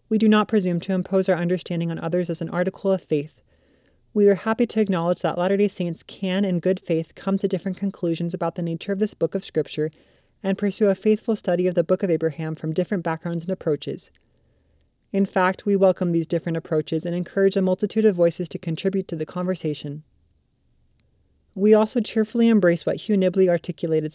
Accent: American